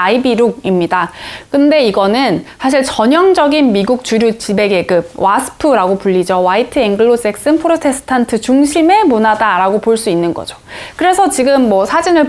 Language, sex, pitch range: Korean, female, 210-295 Hz